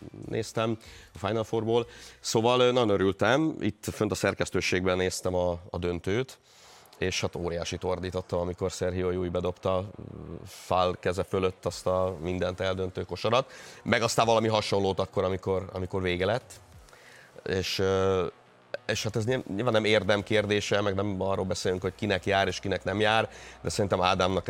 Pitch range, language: 85-105 Hz, Hungarian